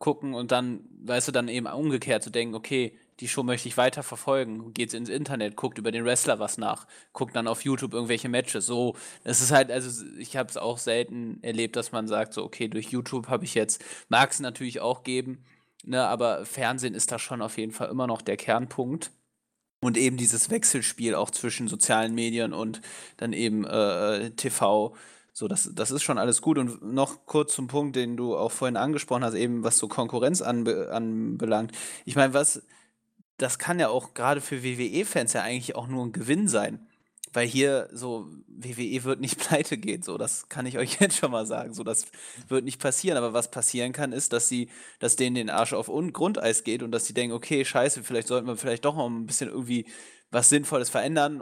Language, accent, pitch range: German, German, 115-135 Hz